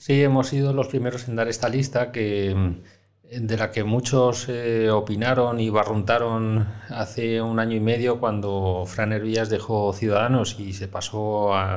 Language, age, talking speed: Spanish, 30-49, 165 wpm